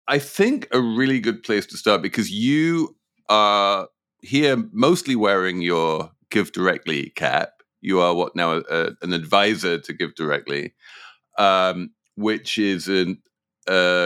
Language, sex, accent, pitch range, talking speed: English, male, British, 85-120 Hz, 120 wpm